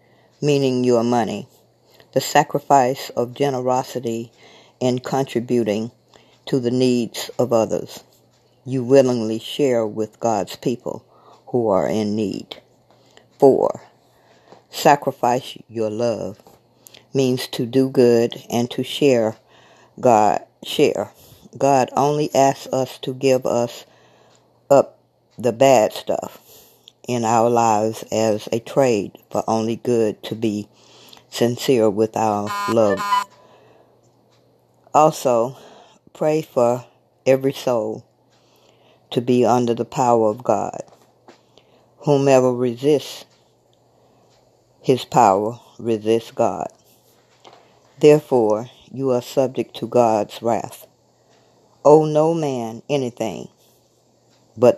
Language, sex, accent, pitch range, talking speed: English, female, American, 115-135 Hz, 100 wpm